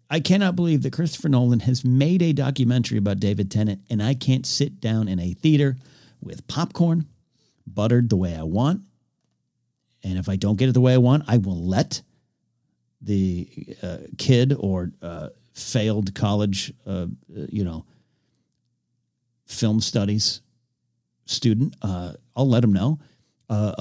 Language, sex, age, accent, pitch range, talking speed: English, male, 50-69, American, 100-135 Hz, 150 wpm